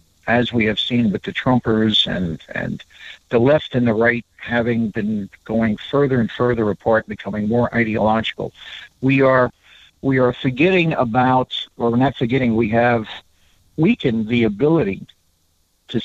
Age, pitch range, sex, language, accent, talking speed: 60-79, 105-135 Hz, male, English, American, 150 wpm